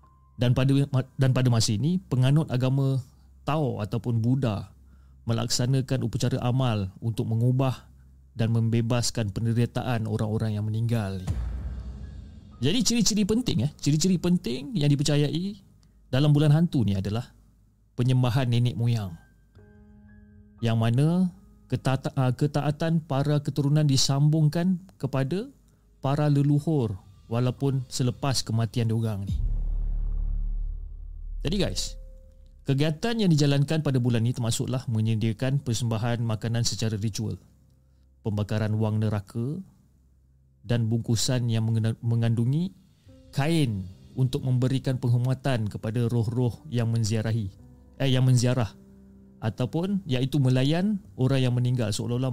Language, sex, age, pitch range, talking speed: Malay, male, 30-49, 100-135 Hz, 105 wpm